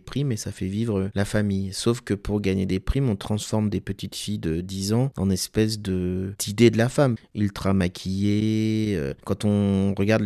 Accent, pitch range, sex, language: French, 95-110 Hz, male, French